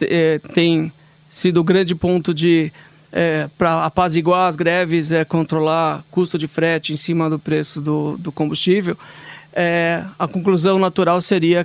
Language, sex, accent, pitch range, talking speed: English, male, Brazilian, 160-185 Hz, 145 wpm